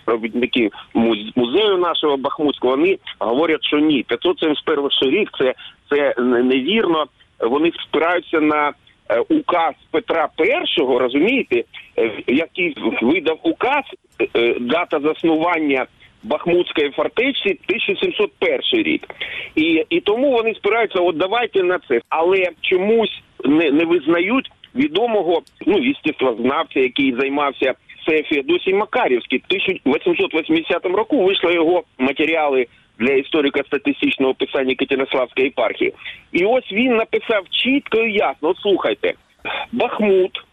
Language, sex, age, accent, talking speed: Ukrainian, male, 50-69, native, 105 wpm